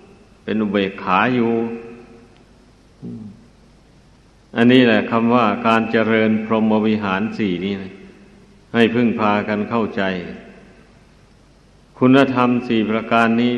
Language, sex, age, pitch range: Thai, male, 60-79, 110-120 Hz